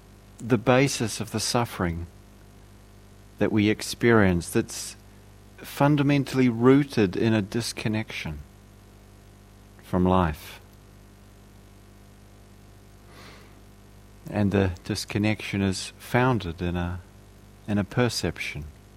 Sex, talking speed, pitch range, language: male, 80 wpm, 100-105 Hz, English